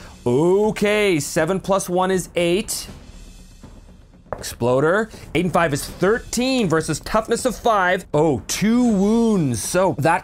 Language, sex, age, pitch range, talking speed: English, male, 30-49, 135-215 Hz, 125 wpm